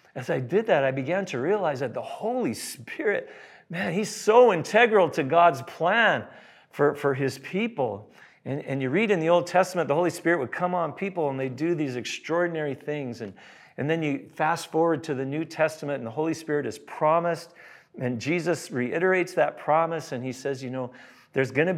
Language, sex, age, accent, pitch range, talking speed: English, male, 50-69, American, 105-160 Hz, 200 wpm